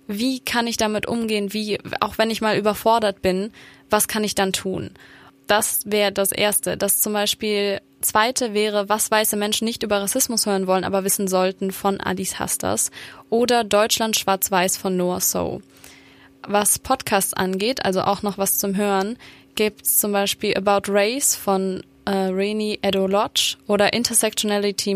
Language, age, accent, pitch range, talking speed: English, 20-39, German, 195-215 Hz, 160 wpm